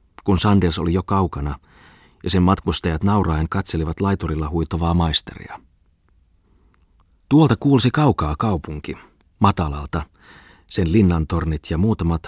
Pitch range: 80-95 Hz